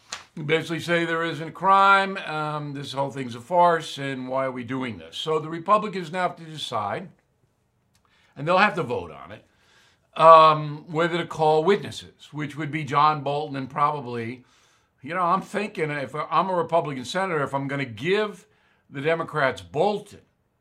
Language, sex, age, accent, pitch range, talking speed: English, male, 50-69, American, 130-175 Hz, 180 wpm